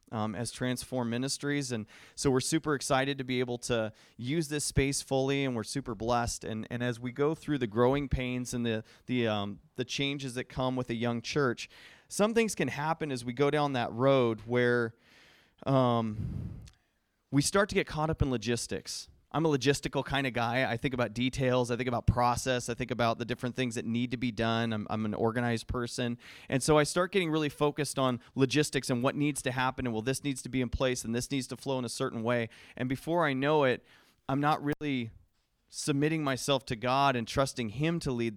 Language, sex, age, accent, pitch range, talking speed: English, male, 30-49, American, 120-140 Hz, 220 wpm